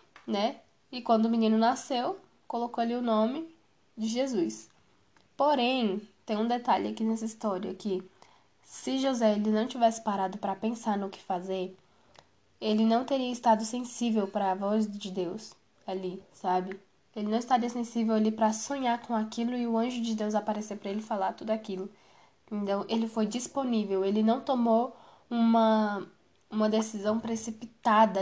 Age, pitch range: 10-29, 205-235 Hz